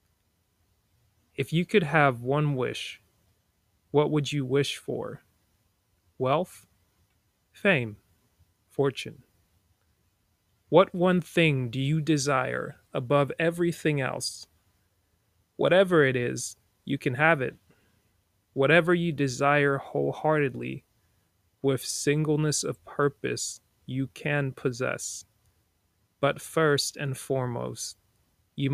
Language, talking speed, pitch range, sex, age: English, 95 wpm, 100-140 Hz, male, 30-49